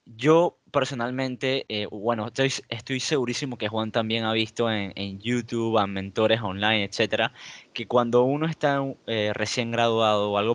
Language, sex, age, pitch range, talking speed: Spanish, male, 10-29, 110-130 Hz, 165 wpm